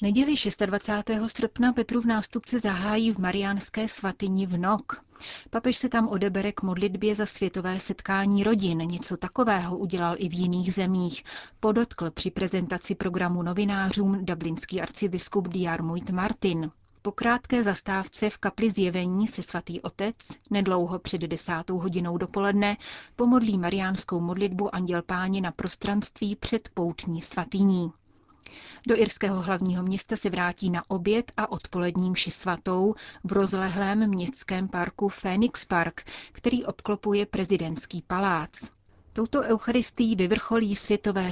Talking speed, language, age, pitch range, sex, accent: 125 wpm, Czech, 30-49, 180-210 Hz, female, native